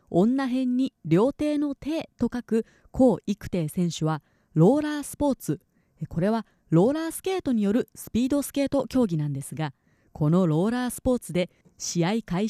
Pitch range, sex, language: 165-255 Hz, female, Japanese